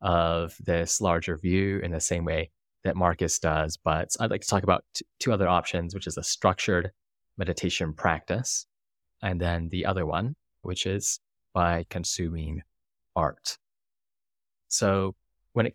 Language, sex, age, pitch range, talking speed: English, male, 20-39, 80-95 Hz, 150 wpm